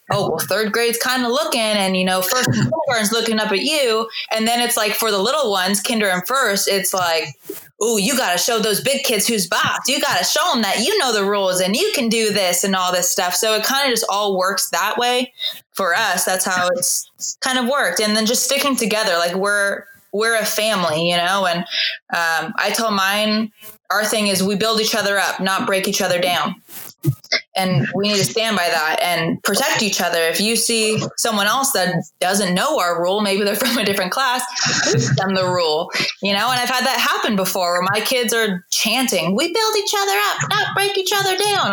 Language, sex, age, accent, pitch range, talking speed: English, female, 20-39, American, 185-240 Hz, 225 wpm